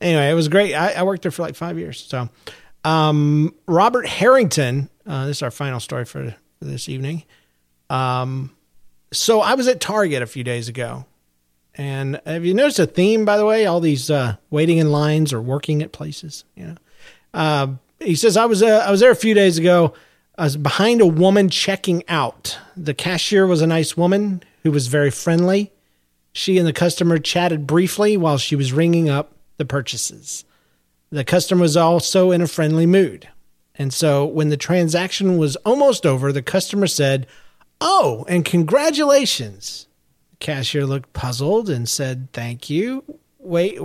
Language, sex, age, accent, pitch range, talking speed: English, male, 40-59, American, 140-185 Hz, 180 wpm